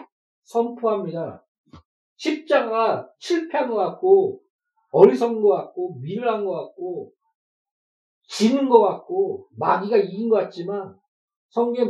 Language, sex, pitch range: Korean, male, 205-335 Hz